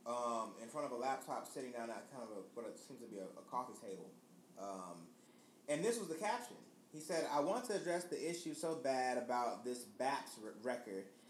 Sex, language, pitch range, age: male, English, 125-180 Hz, 30-49